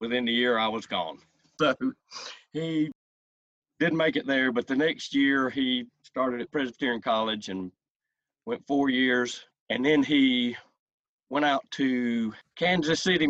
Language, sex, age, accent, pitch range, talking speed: English, male, 40-59, American, 115-140 Hz, 150 wpm